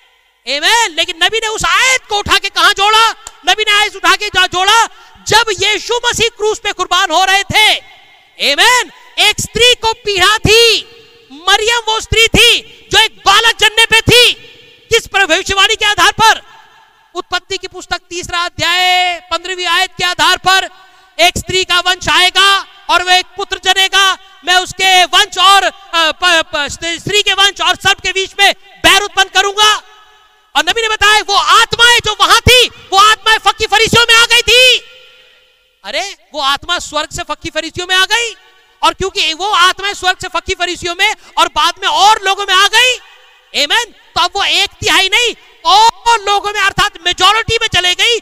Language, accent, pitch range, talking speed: Hindi, native, 360-435 Hz, 85 wpm